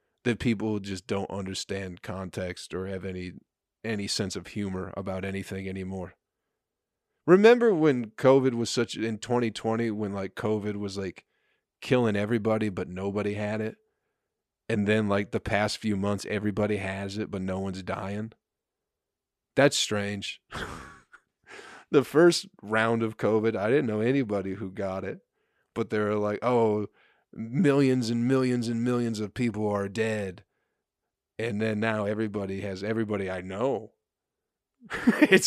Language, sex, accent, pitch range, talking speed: English, male, American, 95-115 Hz, 145 wpm